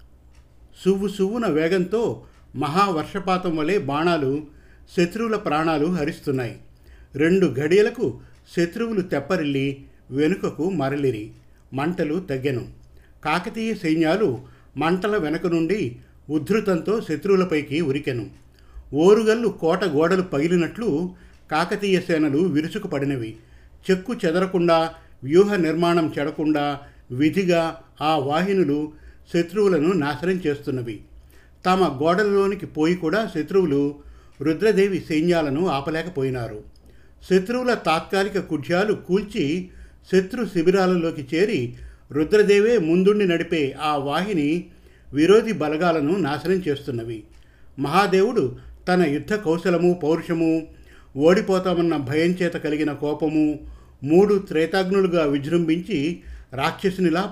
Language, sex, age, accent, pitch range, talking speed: Telugu, male, 50-69, native, 140-185 Hz, 85 wpm